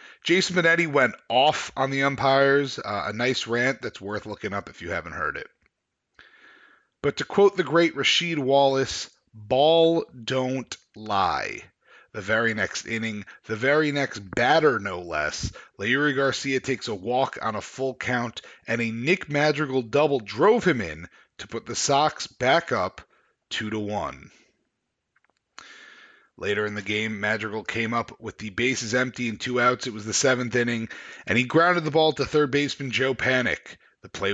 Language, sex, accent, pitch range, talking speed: English, male, American, 110-140 Hz, 170 wpm